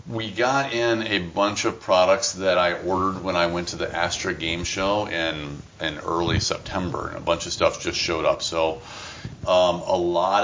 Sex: male